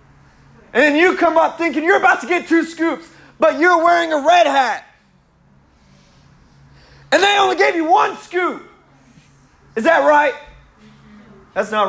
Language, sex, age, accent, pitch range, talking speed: English, male, 30-49, American, 195-280 Hz, 150 wpm